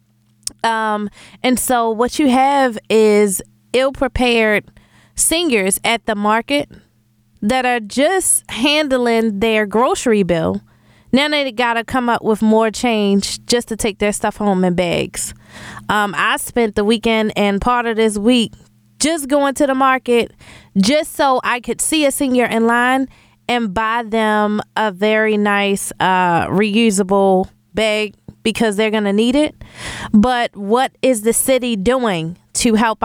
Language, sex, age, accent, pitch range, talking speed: English, female, 20-39, American, 205-270 Hz, 150 wpm